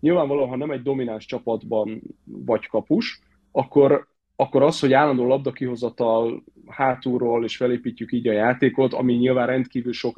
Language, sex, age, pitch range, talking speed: Hungarian, male, 30-49, 115-140 Hz, 140 wpm